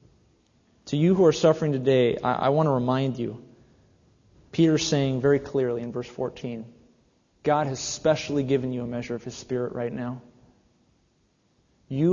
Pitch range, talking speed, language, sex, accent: 125-160 Hz, 160 wpm, English, male, American